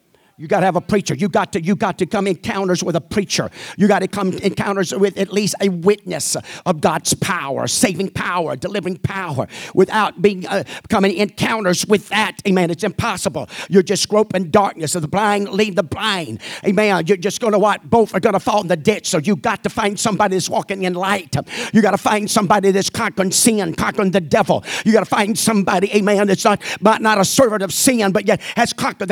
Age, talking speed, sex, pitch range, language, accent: 50-69, 220 wpm, male, 195-225 Hz, English, American